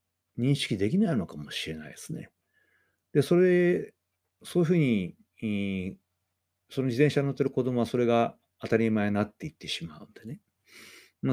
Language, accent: Japanese, native